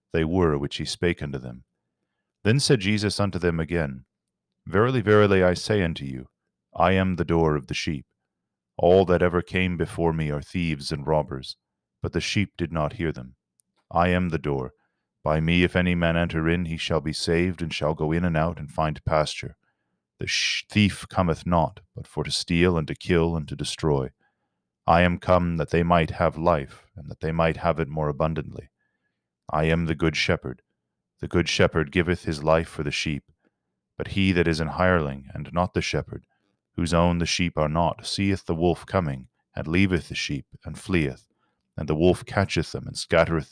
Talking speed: 200 wpm